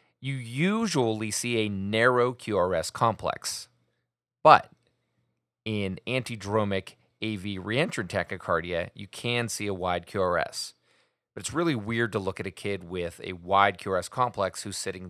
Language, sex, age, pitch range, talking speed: English, male, 30-49, 95-115 Hz, 140 wpm